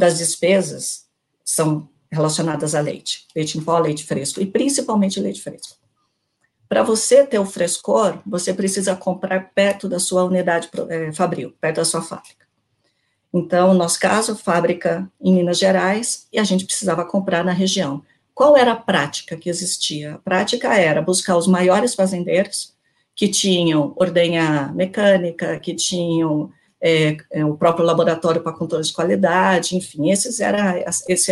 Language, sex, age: Portuguese, female, 50-69